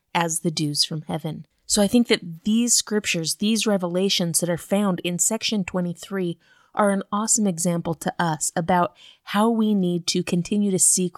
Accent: American